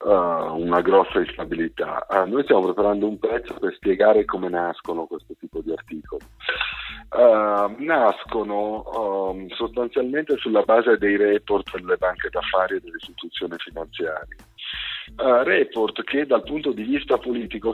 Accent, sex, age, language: native, male, 50-69, Italian